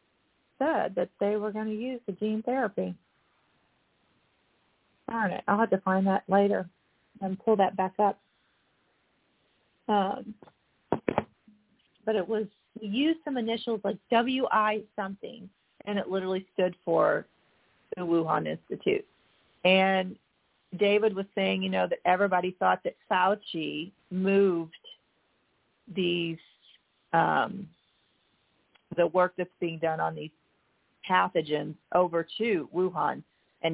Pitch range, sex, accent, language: 170-205 Hz, female, American, English